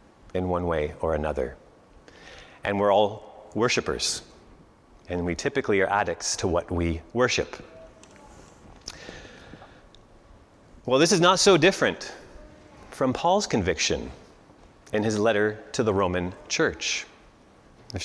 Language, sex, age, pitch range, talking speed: English, male, 30-49, 110-145 Hz, 115 wpm